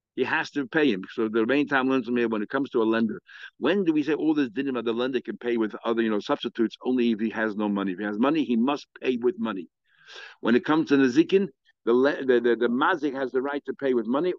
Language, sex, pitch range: English, male, 110-145 Hz